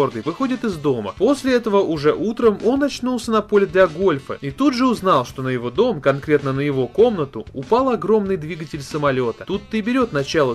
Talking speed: 190 wpm